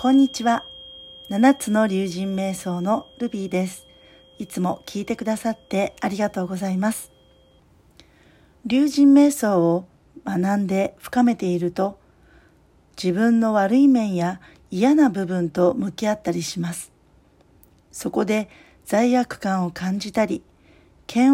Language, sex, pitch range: Japanese, female, 180-225 Hz